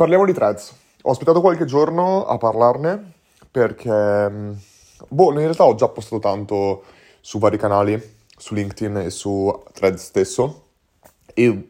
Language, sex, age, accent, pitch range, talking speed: Italian, male, 30-49, native, 100-120 Hz, 140 wpm